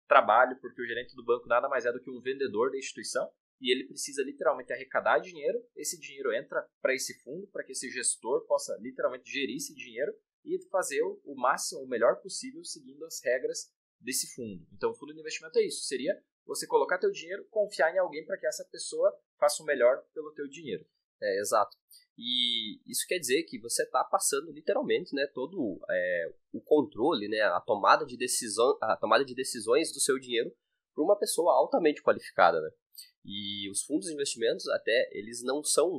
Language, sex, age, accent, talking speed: Portuguese, male, 20-39, Brazilian, 195 wpm